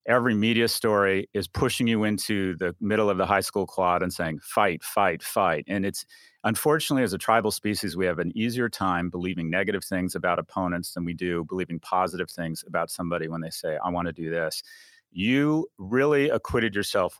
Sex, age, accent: male, 40-59, American